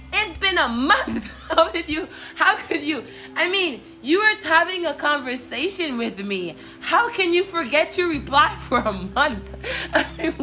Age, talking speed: 20-39, 175 wpm